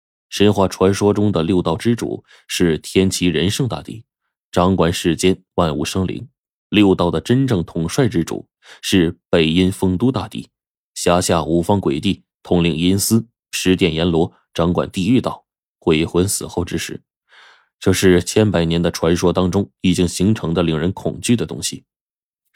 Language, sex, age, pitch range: Chinese, male, 20-39, 80-100 Hz